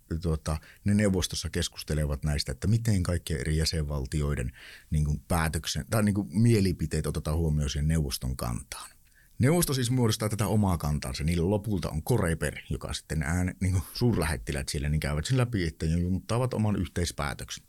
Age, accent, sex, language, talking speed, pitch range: 60-79, native, male, Finnish, 155 wpm, 80-110 Hz